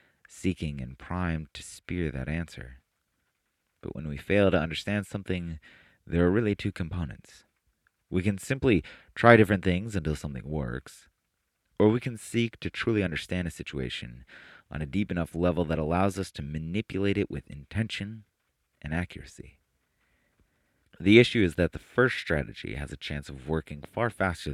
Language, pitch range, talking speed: English, 75-100 Hz, 160 wpm